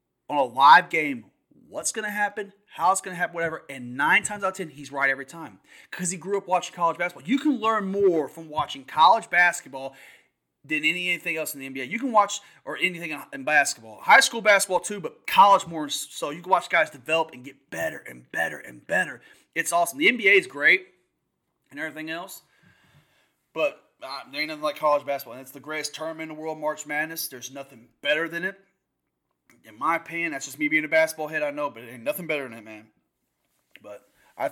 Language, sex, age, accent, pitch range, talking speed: English, male, 30-49, American, 135-185 Hz, 215 wpm